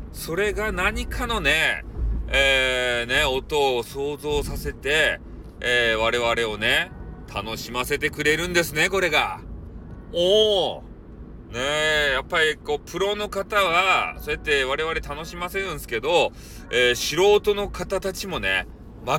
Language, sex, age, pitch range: Japanese, male, 40-59, 120-200 Hz